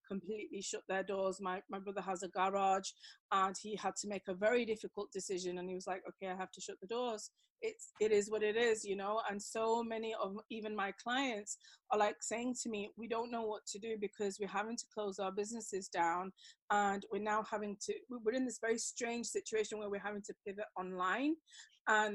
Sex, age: female, 20-39